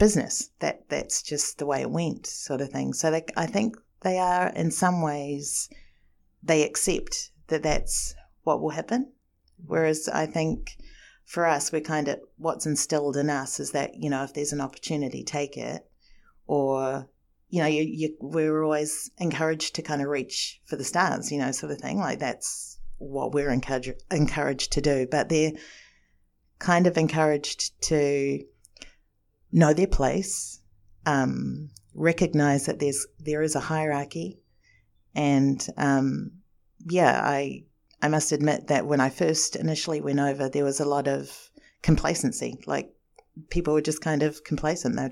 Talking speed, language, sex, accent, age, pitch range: 165 wpm, English, female, Australian, 40-59, 135-155 Hz